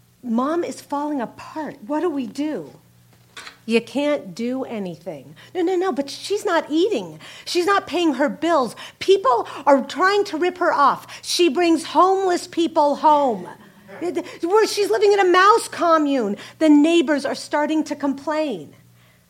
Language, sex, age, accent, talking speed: English, female, 50-69, American, 150 wpm